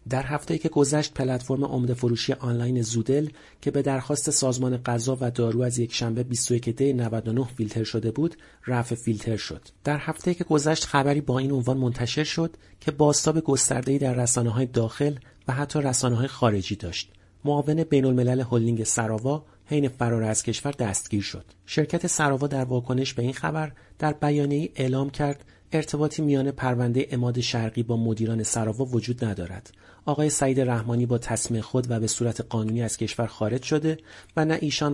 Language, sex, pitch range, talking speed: Persian, male, 115-140 Hz, 165 wpm